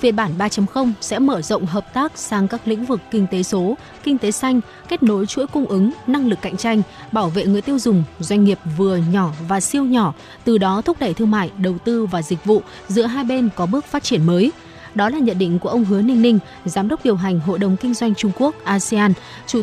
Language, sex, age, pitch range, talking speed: Vietnamese, female, 20-39, 195-245 Hz, 245 wpm